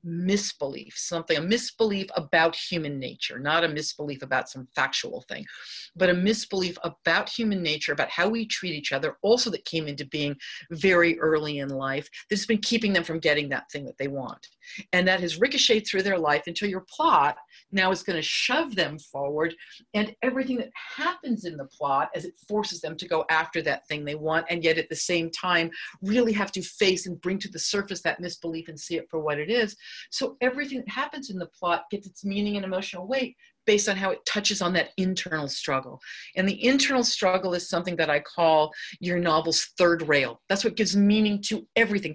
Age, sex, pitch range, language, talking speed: 50-69, female, 170-235 Hz, English, 210 wpm